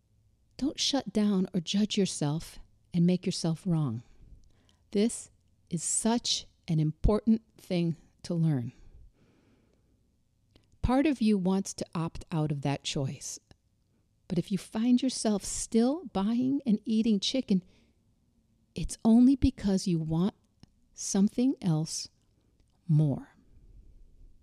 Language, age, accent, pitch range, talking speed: English, 50-69, American, 145-210 Hz, 115 wpm